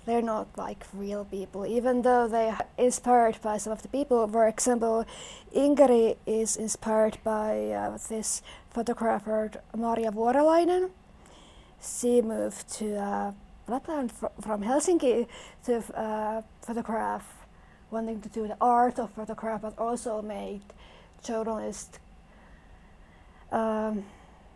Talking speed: 115 wpm